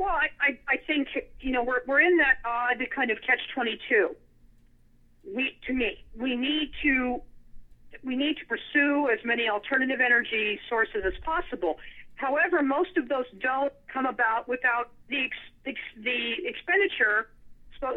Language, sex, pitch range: English, female, 225-275 Hz